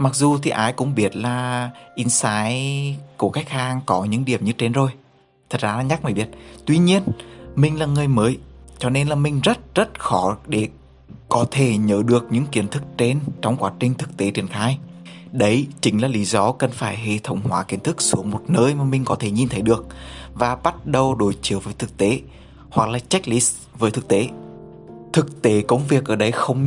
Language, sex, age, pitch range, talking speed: Vietnamese, male, 20-39, 110-135 Hz, 215 wpm